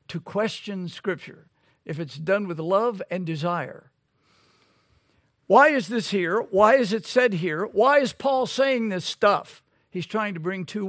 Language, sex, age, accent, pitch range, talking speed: English, male, 60-79, American, 160-230 Hz, 165 wpm